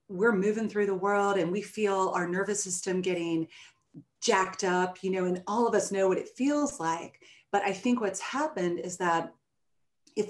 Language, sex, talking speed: English, female, 190 wpm